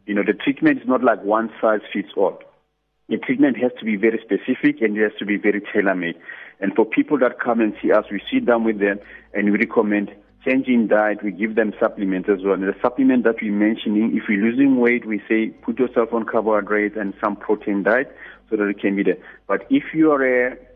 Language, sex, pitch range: English, male, 100-120 Hz